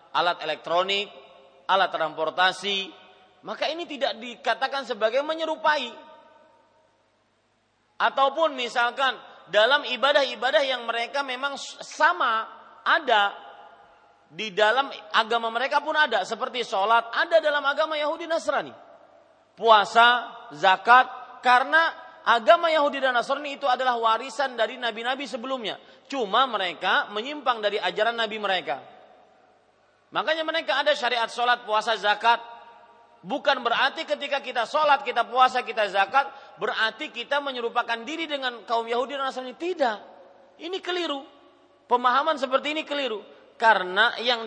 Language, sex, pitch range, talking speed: Malay, male, 220-290 Hz, 115 wpm